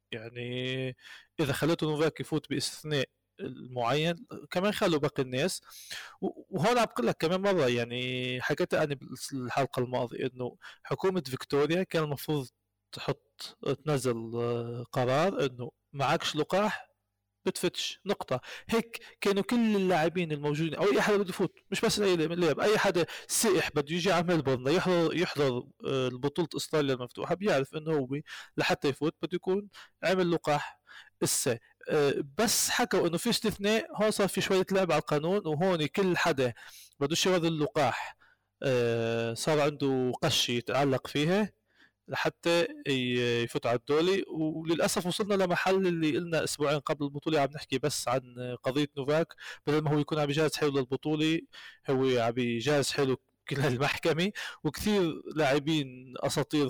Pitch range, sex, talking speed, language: 130-175 Hz, male, 135 wpm, Arabic